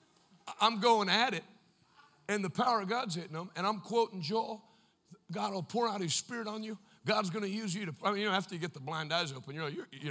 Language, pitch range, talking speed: English, 155-195 Hz, 245 wpm